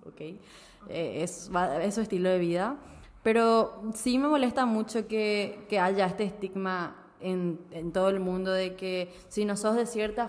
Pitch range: 180-210 Hz